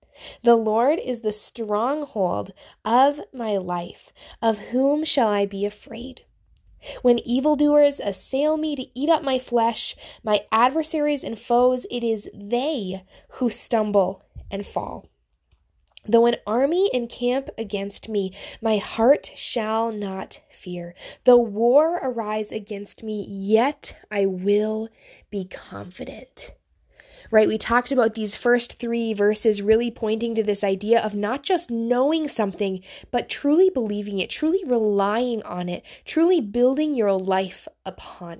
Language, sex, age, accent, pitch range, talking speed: English, female, 10-29, American, 200-255 Hz, 135 wpm